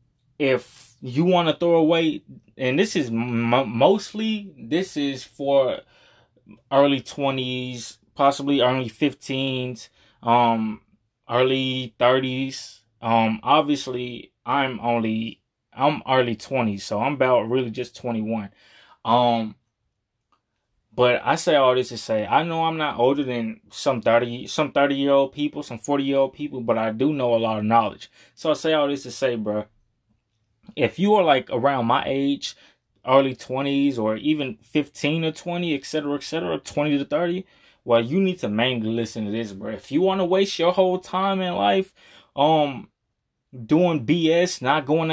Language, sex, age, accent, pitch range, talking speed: English, male, 20-39, American, 120-155 Hz, 165 wpm